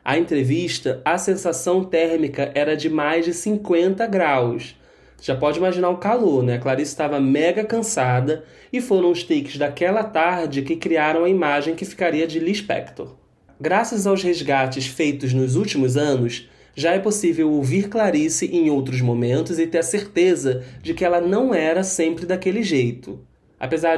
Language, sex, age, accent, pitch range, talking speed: Portuguese, male, 20-39, Brazilian, 135-180 Hz, 160 wpm